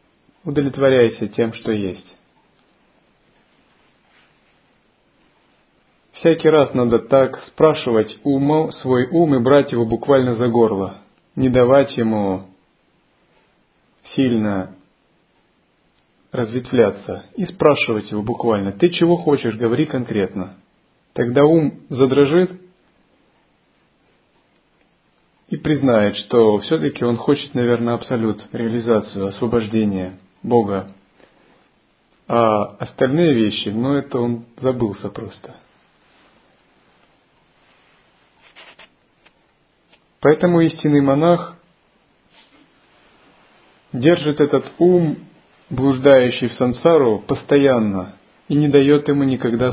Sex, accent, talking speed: male, native, 80 wpm